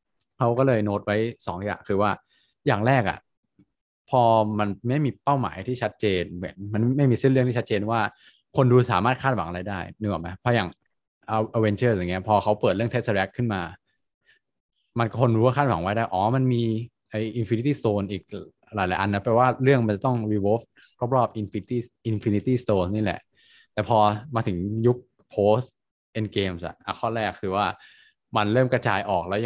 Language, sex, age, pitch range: Thai, male, 20-39, 100-120 Hz